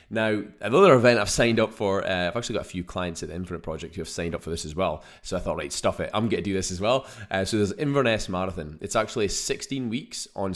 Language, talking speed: English, 280 wpm